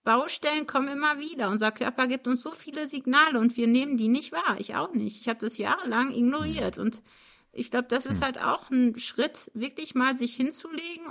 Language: German